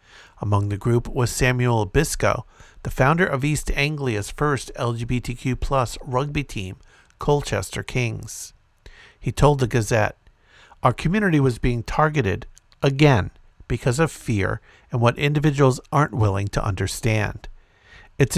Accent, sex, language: American, male, English